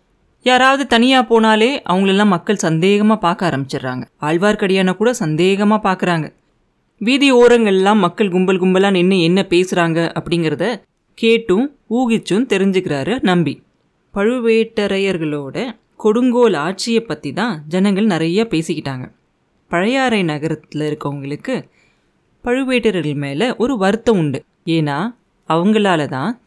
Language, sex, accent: Tamil, female, native